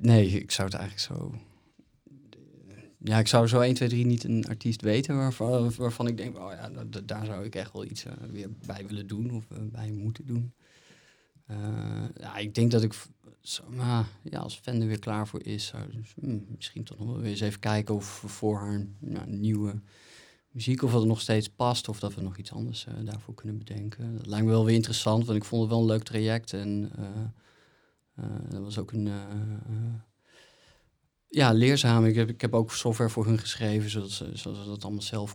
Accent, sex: Dutch, male